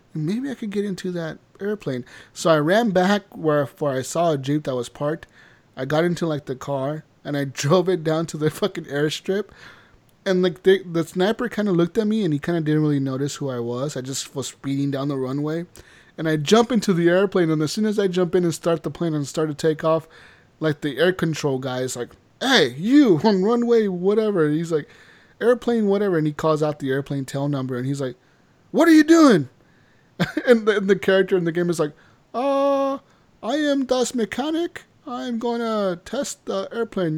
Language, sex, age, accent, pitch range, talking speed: English, male, 20-39, American, 140-195 Hz, 220 wpm